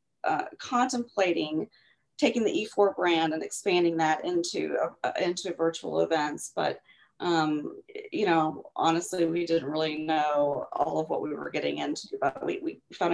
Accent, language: American, English